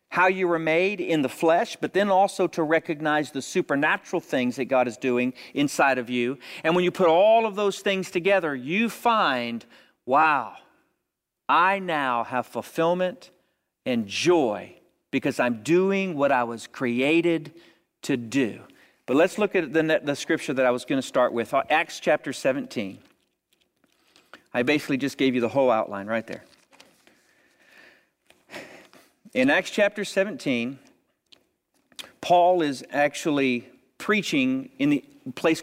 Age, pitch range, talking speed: 50-69, 135-205 Hz, 145 wpm